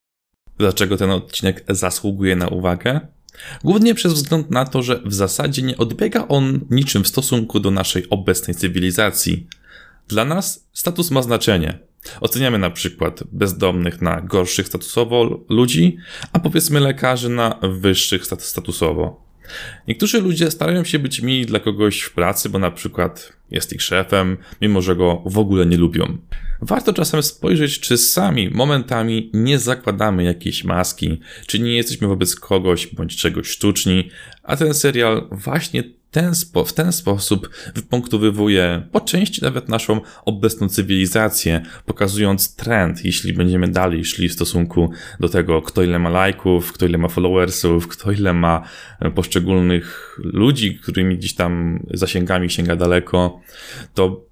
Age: 20-39